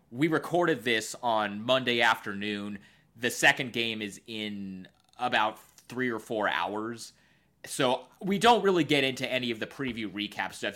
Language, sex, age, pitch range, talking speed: English, male, 30-49, 105-135 Hz, 155 wpm